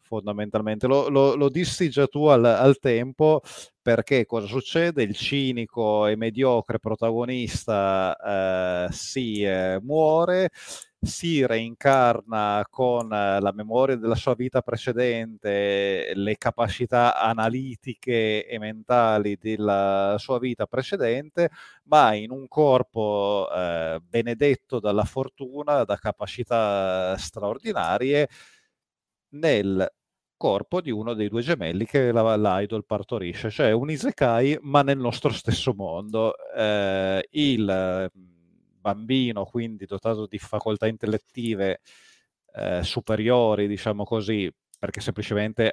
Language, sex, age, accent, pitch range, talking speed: Italian, male, 30-49, native, 100-125 Hz, 110 wpm